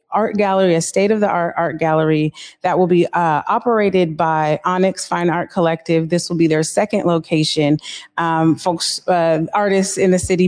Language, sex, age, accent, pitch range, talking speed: English, female, 30-49, American, 170-205 Hz, 165 wpm